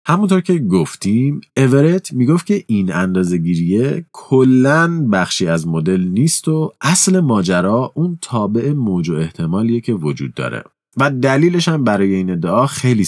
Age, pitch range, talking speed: 30-49, 85-125 Hz, 140 wpm